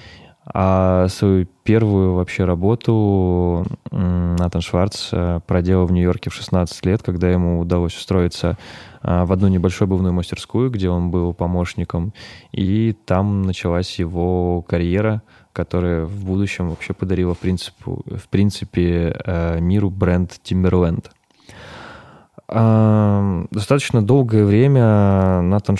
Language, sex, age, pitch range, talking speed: Russian, male, 20-39, 90-105 Hz, 105 wpm